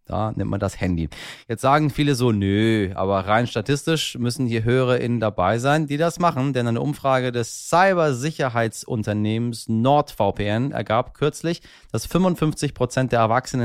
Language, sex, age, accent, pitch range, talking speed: German, male, 30-49, German, 105-135 Hz, 145 wpm